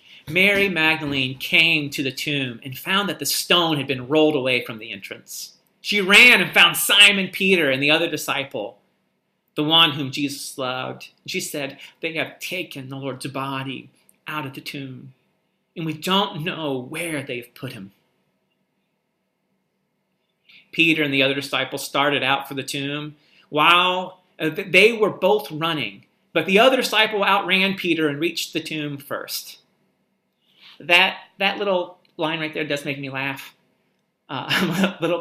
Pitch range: 140-185 Hz